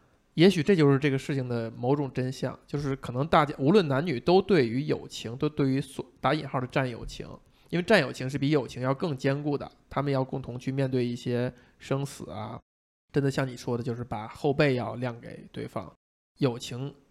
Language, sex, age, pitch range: Chinese, male, 20-39, 125-155 Hz